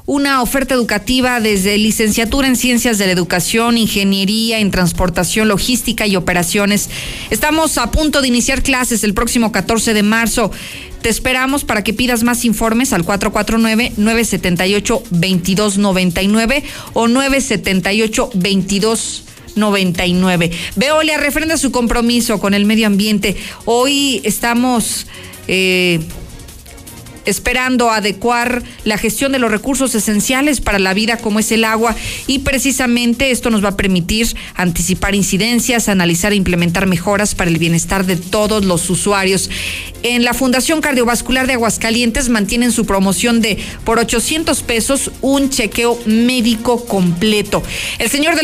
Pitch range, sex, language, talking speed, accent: 200-245 Hz, female, Spanish, 130 wpm, Mexican